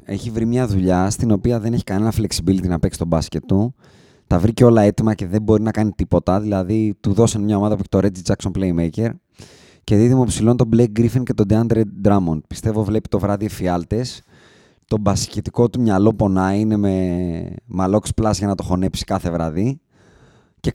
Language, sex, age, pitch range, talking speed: Greek, male, 20-39, 100-135 Hz, 190 wpm